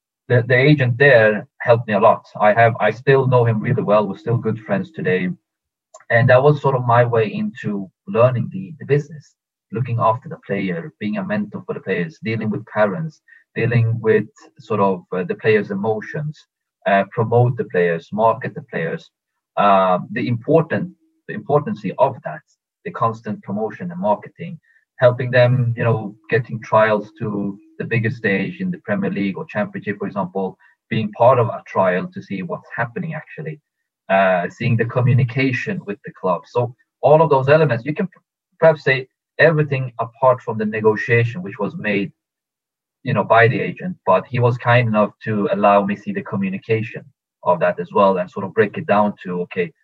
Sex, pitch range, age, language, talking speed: male, 110-155 Hz, 30-49, English, 185 wpm